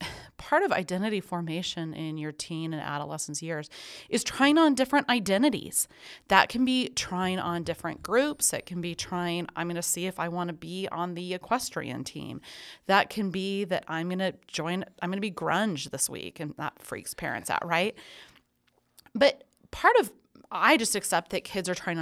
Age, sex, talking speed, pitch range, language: 30-49, female, 190 wpm, 160-250 Hz, English